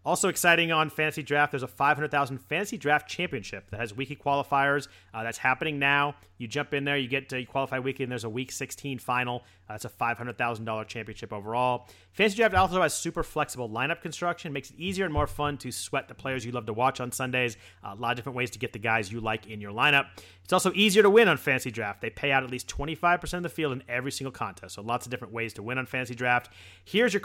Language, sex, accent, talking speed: English, male, American, 245 wpm